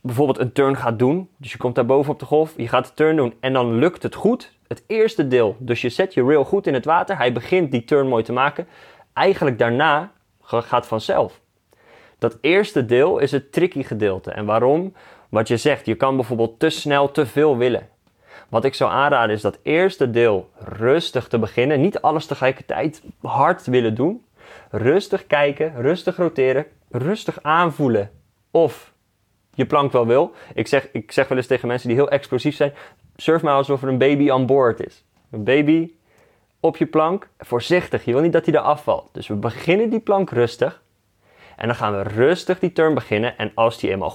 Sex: male